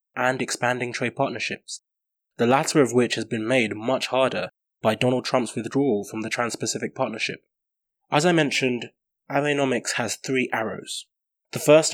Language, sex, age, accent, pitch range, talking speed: English, male, 20-39, British, 120-145 Hz, 150 wpm